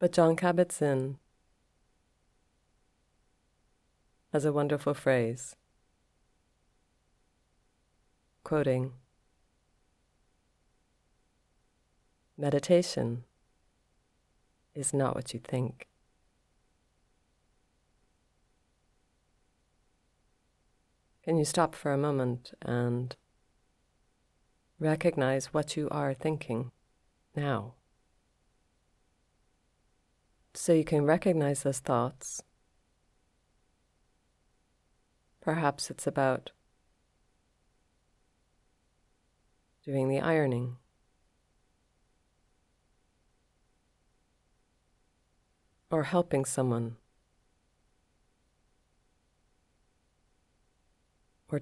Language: English